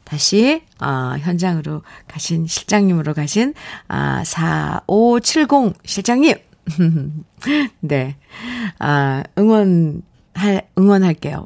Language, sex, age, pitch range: Korean, female, 50-69, 155-220 Hz